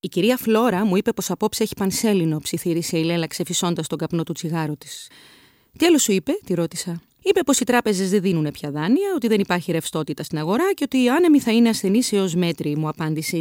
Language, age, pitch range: Greek, 30-49, 165-220 Hz